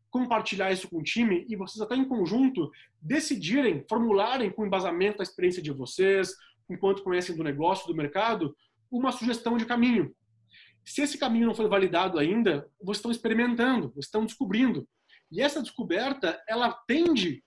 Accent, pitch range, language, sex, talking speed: Brazilian, 200-255 Hz, Portuguese, male, 160 wpm